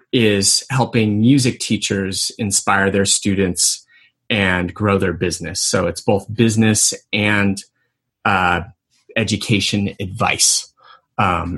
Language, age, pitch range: English, 30-49, 100-120 Hz